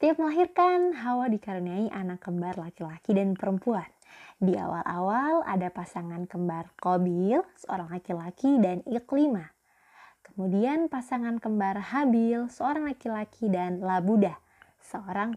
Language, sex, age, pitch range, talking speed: Indonesian, female, 20-39, 185-265 Hz, 110 wpm